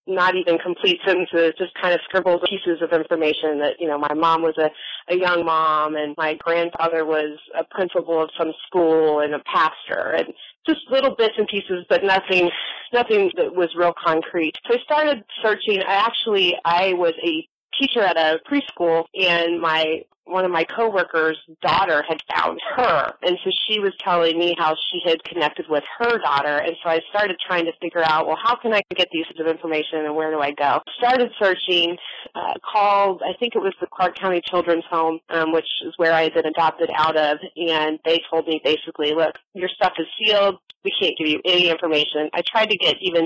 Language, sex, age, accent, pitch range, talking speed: English, female, 30-49, American, 160-195 Hz, 205 wpm